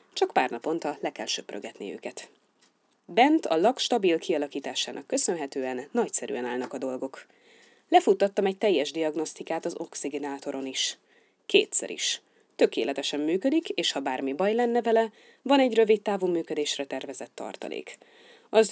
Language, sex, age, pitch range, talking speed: Hungarian, female, 30-49, 145-230 Hz, 135 wpm